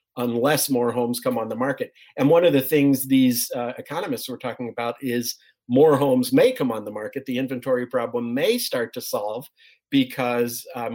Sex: male